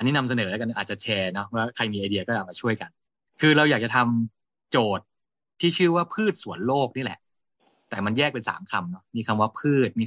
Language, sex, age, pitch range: Thai, male, 20-39, 100-135 Hz